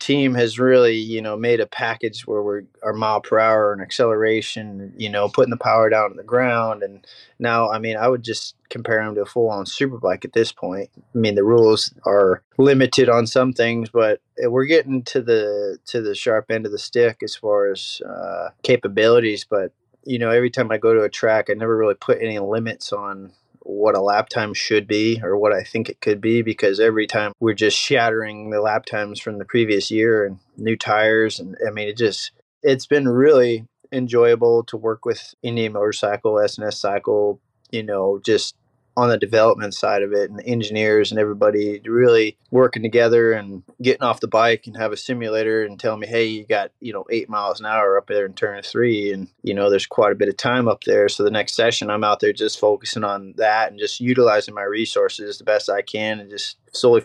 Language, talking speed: English, 215 wpm